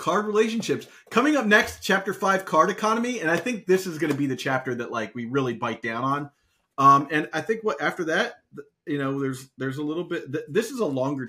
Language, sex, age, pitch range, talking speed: English, male, 30-49, 135-200 Hz, 235 wpm